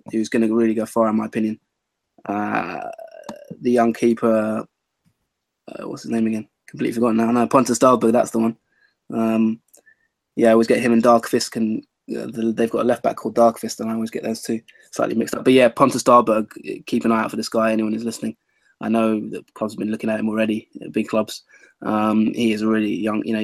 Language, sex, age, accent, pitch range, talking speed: English, male, 20-39, British, 110-120 Hz, 225 wpm